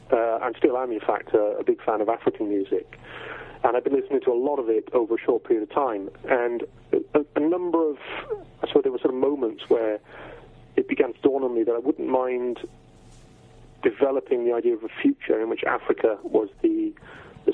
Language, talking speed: English, 220 wpm